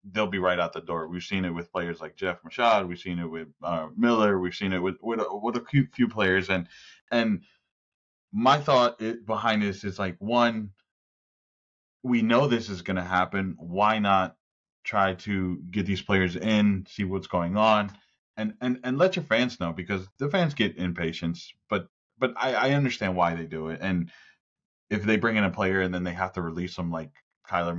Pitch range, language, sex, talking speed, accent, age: 90-120 Hz, English, male, 205 wpm, American, 20-39